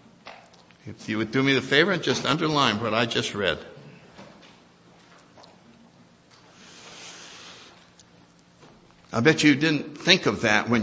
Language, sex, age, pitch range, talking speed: English, male, 60-79, 115-150 Hz, 120 wpm